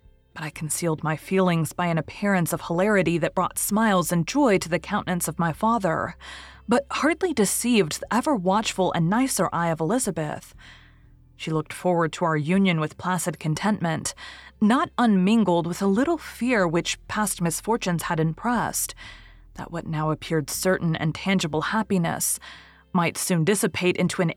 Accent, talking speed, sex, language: American, 160 wpm, female, English